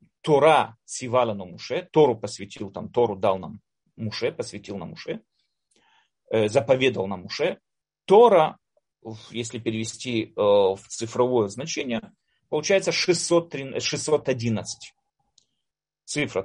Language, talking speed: Russian, 95 wpm